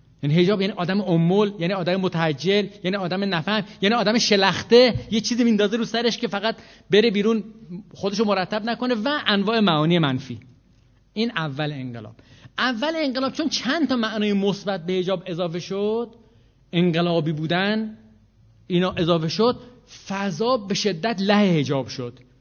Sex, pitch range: male, 150-225 Hz